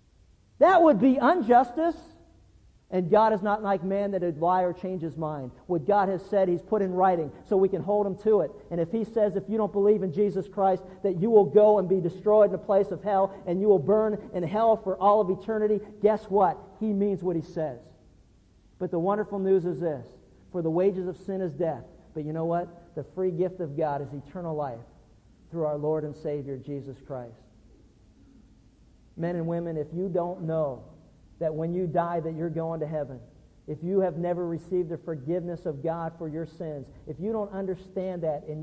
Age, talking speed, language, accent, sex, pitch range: 50-69, 215 wpm, English, American, male, 155-190 Hz